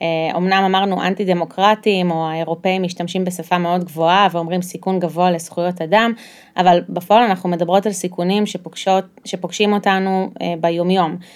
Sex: female